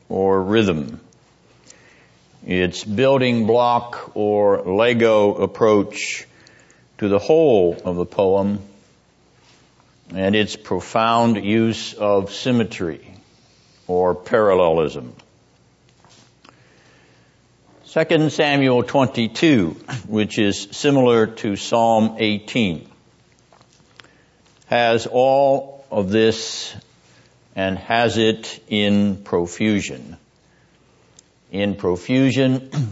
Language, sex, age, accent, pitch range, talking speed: English, male, 60-79, American, 95-120 Hz, 75 wpm